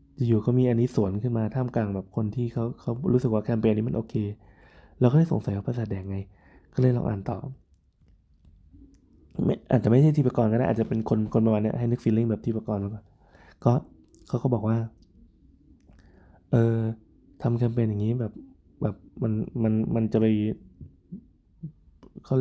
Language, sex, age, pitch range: Thai, male, 20-39, 100-125 Hz